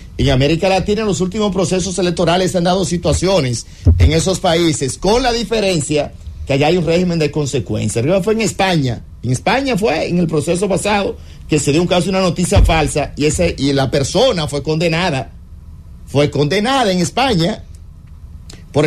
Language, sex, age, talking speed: English, male, 50-69, 180 wpm